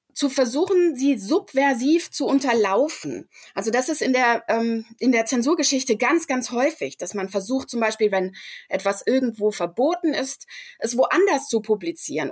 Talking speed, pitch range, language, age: 155 wpm, 220-300 Hz, German, 20-39